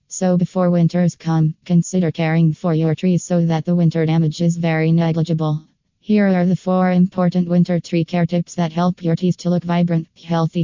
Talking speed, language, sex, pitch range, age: 190 wpm, English, female, 165-180 Hz, 20-39